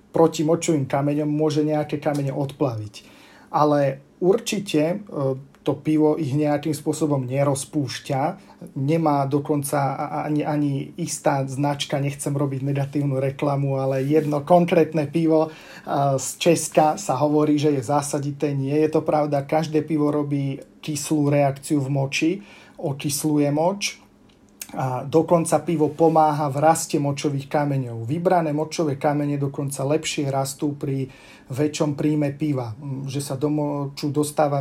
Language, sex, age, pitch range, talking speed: Slovak, male, 40-59, 140-160 Hz, 125 wpm